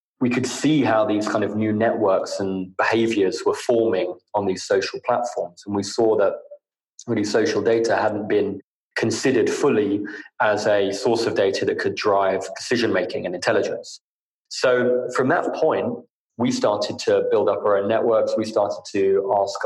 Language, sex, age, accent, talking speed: English, male, 20-39, British, 170 wpm